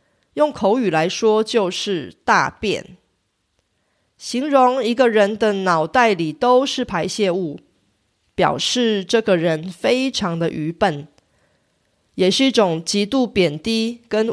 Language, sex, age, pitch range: Korean, female, 30-49, 180-250 Hz